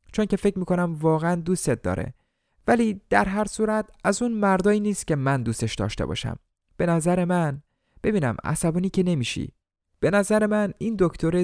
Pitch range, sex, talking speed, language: 115-170 Hz, male, 170 wpm, Persian